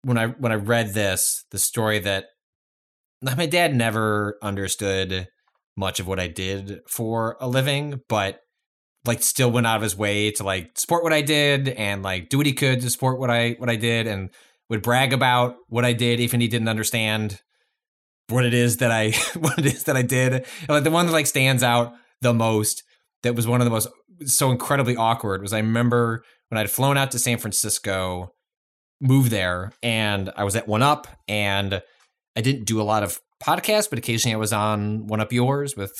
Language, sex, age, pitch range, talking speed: English, male, 20-39, 95-125 Hz, 210 wpm